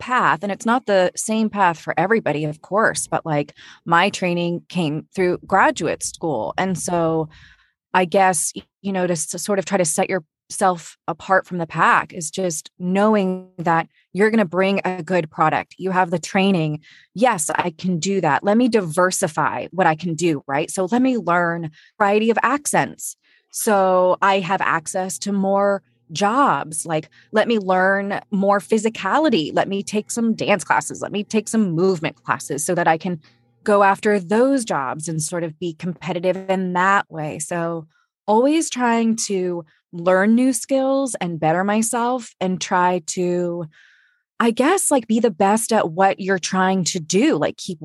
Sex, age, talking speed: female, 20-39, 175 wpm